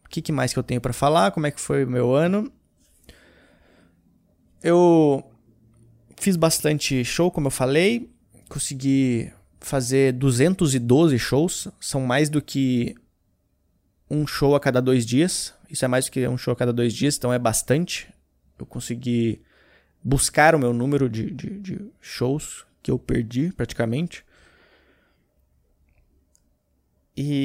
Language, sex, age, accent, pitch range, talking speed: Portuguese, male, 20-39, Brazilian, 115-155 Hz, 145 wpm